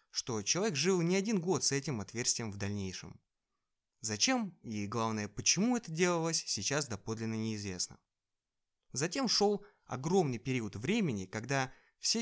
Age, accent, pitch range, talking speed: 20-39, native, 110-155 Hz, 135 wpm